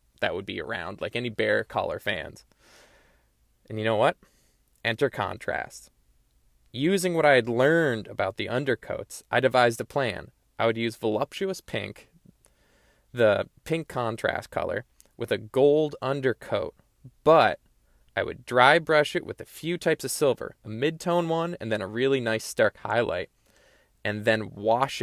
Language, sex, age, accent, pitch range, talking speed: English, male, 20-39, American, 110-145 Hz, 155 wpm